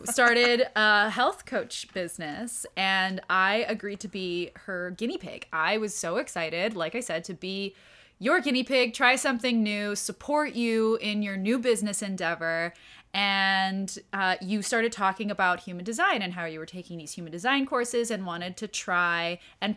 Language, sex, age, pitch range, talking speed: English, female, 20-39, 180-240 Hz, 175 wpm